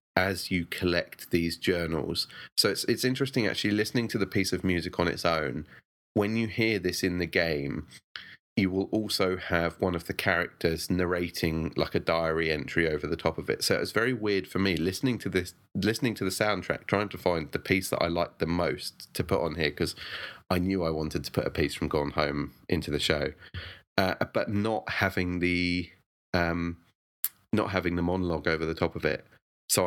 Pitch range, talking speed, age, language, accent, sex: 85-95 Hz, 205 wpm, 30-49, English, British, male